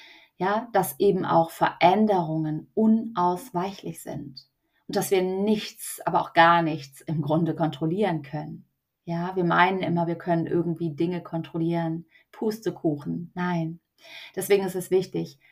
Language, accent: German, German